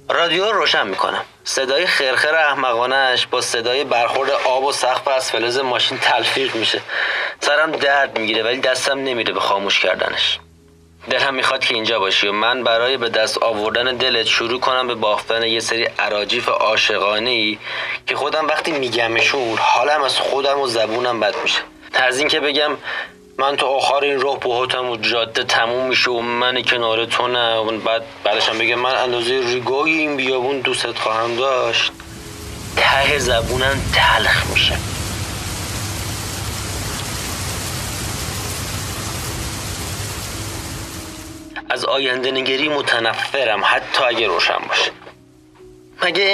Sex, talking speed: male, 130 wpm